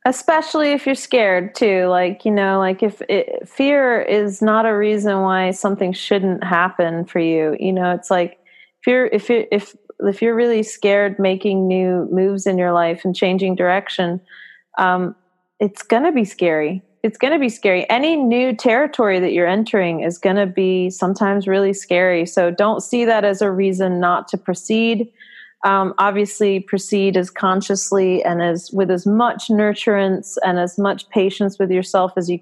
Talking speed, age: 180 wpm, 30-49